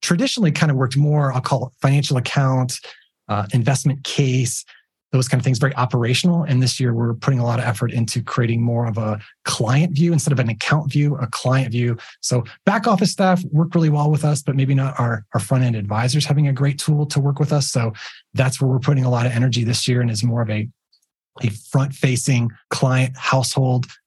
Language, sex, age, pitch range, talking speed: English, male, 30-49, 120-150 Hz, 220 wpm